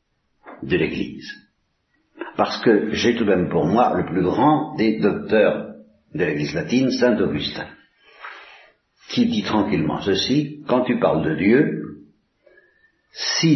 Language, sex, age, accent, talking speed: Italian, male, 60-79, French, 135 wpm